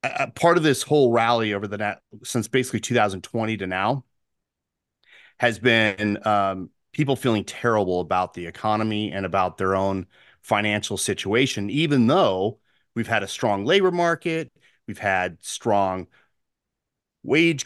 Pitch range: 100-130 Hz